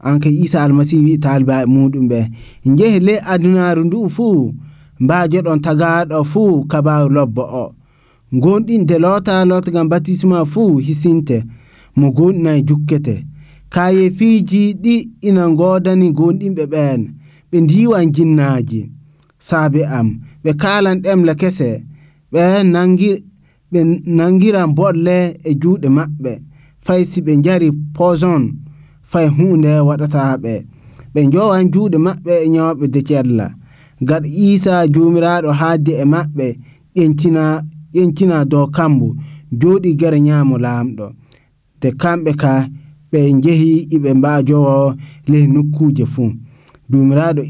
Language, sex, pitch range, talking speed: English, male, 135-175 Hz, 105 wpm